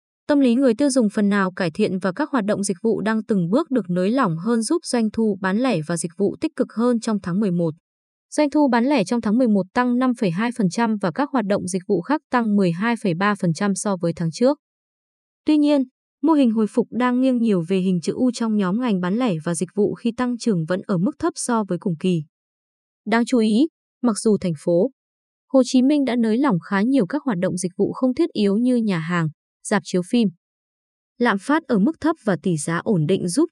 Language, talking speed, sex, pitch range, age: Vietnamese, 235 wpm, female, 190-250 Hz, 20-39